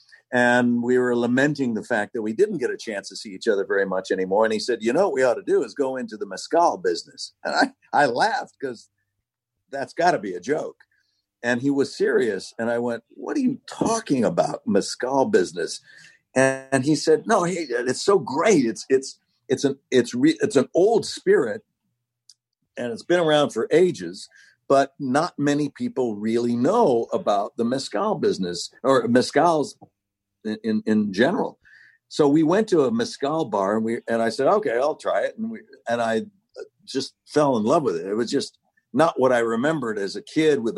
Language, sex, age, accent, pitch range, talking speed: English, male, 60-79, American, 115-170 Hz, 200 wpm